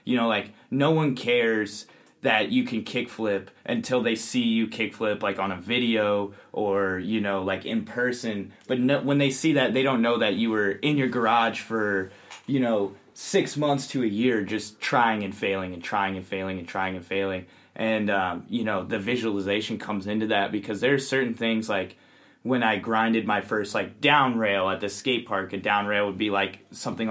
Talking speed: 205 wpm